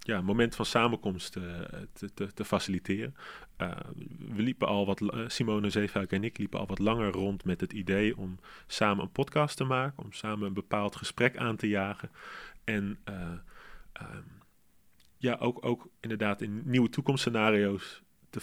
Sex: male